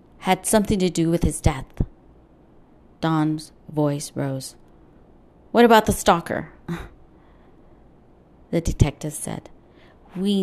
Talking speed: 105 wpm